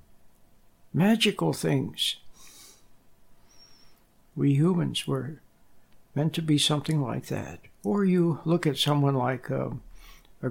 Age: 60-79